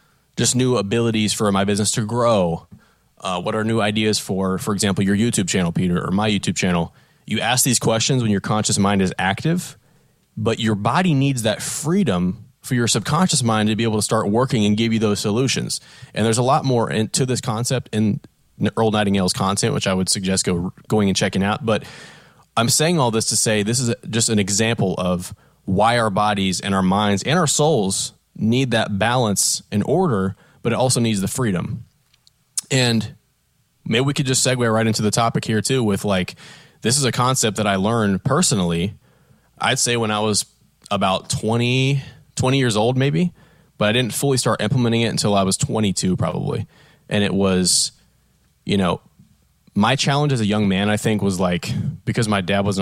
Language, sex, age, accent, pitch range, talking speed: English, male, 20-39, American, 100-130 Hz, 200 wpm